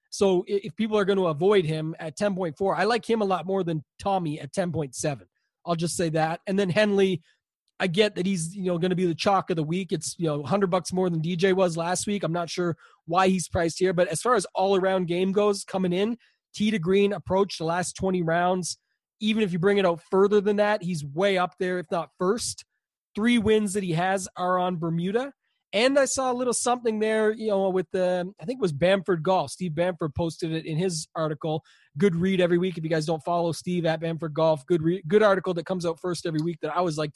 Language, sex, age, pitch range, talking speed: English, male, 30-49, 170-200 Hz, 245 wpm